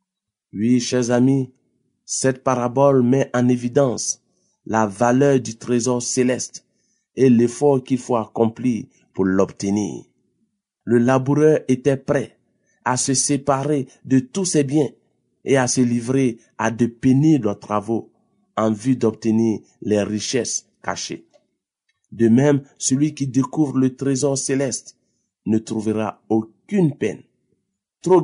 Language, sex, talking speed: French, male, 125 wpm